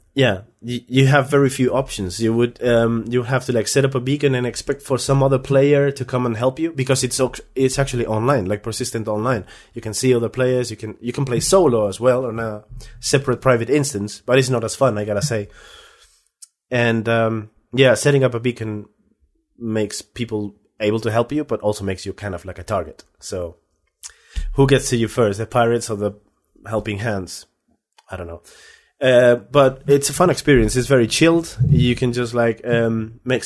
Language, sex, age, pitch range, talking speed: English, male, 30-49, 105-135 Hz, 205 wpm